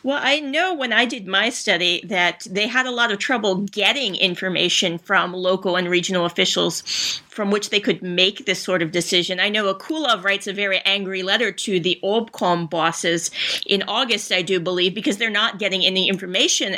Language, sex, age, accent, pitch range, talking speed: English, female, 40-59, American, 185-230 Hz, 195 wpm